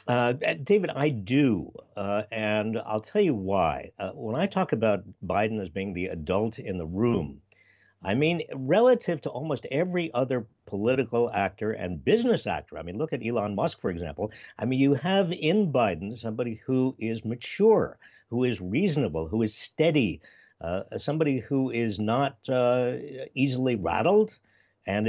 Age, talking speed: 60-79, 165 wpm